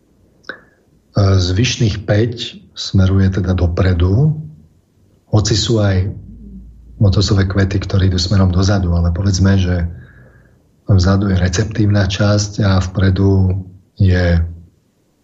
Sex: male